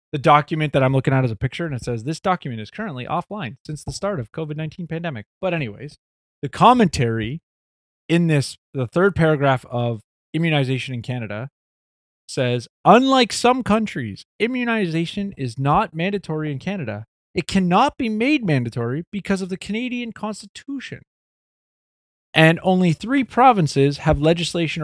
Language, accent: English, American